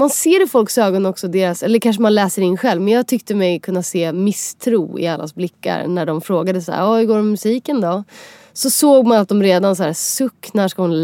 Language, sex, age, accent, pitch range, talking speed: English, female, 30-49, Swedish, 185-270 Hz, 250 wpm